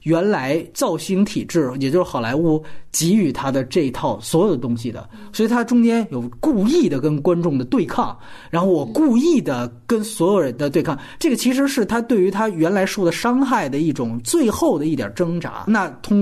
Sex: male